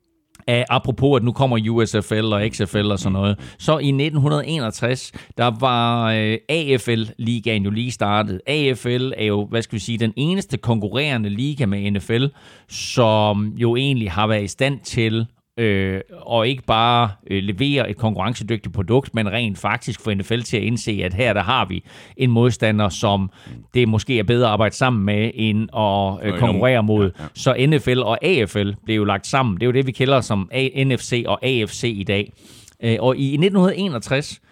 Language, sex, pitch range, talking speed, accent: Danish, male, 100-125 Hz, 175 wpm, native